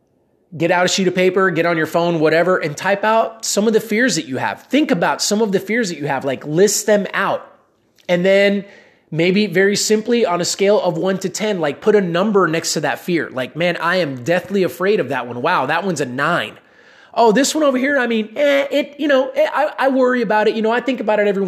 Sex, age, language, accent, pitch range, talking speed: male, 20-39, English, American, 170-215 Hz, 255 wpm